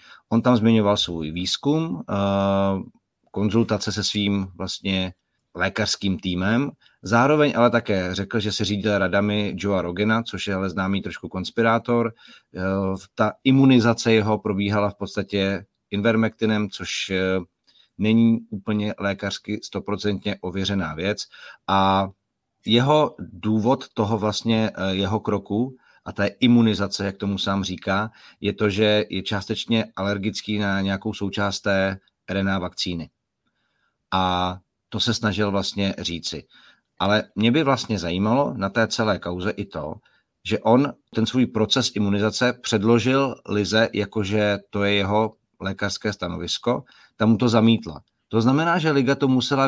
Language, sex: Czech, male